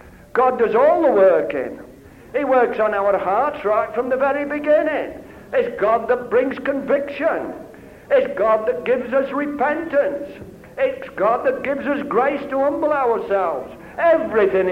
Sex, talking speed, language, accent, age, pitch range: male, 145 wpm, English, British, 60-79, 170-275 Hz